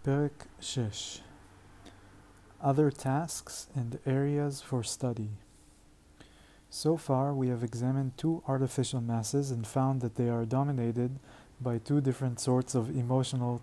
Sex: male